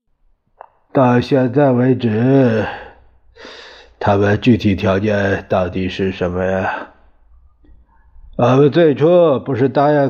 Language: Chinese